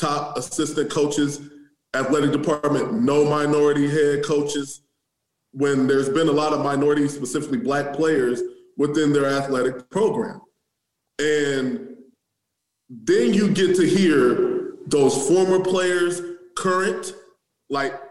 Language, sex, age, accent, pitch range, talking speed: English, male, 20-39, American, 145-195 Hz, 115 wpm